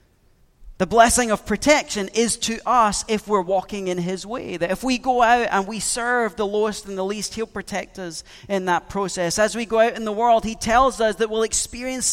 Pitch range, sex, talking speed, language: 190-235 Hz, male, 225 wpm, English